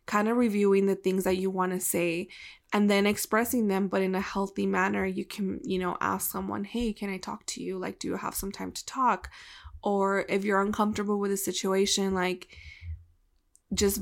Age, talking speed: 20-39, 205 wpm